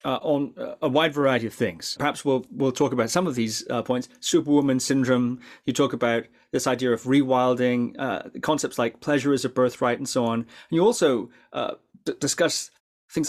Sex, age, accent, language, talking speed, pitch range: male, 30-49, British, English, 190 wpm, 120-150 Hz